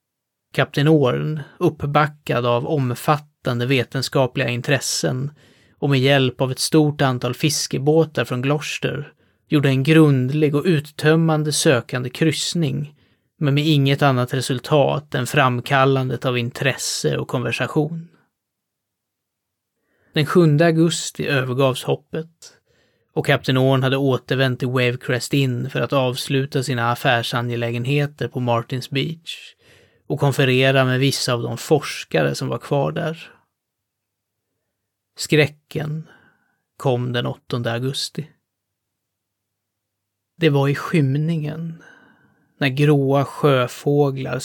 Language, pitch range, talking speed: Swedish, 120-150 Hz, 105 wpm